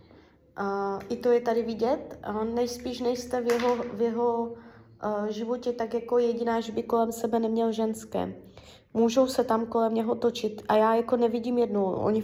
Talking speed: 155 wpm